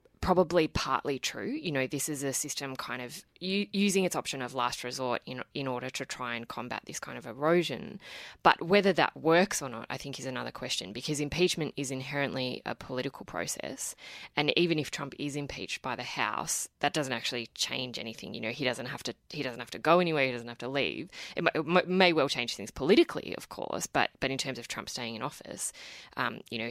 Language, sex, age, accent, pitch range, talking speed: English, female, 20-39, Australian, 125-155 Hz, 225 wpm